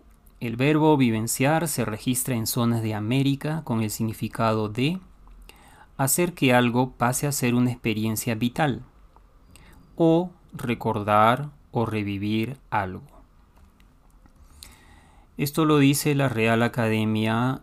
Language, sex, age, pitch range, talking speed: Spanish, male, 30-49, 110-130 Hz, 110 wpm